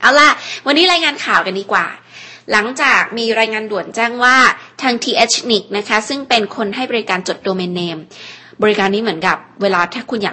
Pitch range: 185-230 Hz